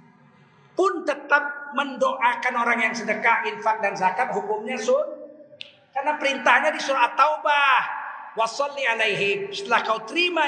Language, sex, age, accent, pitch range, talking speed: Indonesian, male, 50-69, native, 215-305 Hz, 110 wpm